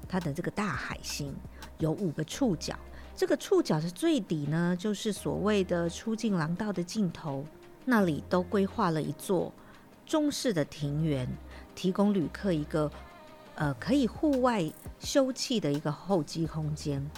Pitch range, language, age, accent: 155-210 Hz, Chinese, 50-69, American